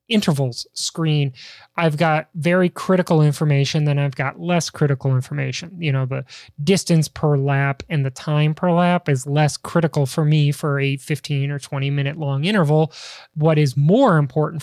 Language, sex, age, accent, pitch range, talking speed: English, male, 20-39, American, 145-175 Hz, 170 wpm